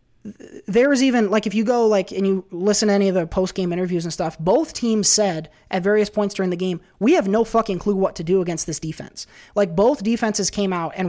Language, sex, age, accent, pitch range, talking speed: English, male, 20-39, American, 180-225 Hz, 240 wpm